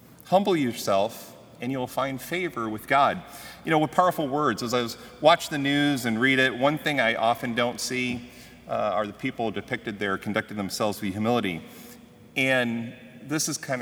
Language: English